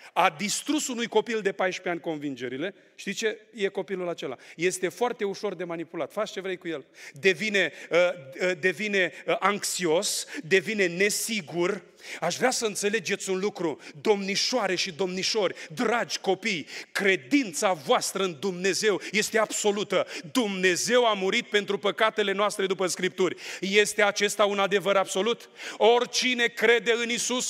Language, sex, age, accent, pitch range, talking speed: Romanian, male, 30-49, native, 180-225 Hz, 135 wpm